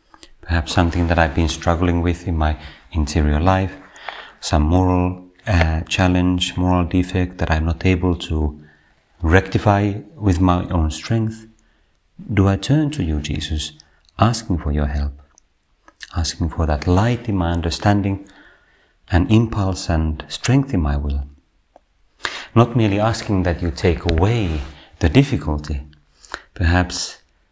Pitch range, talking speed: 80-105 Hz, 135 wpm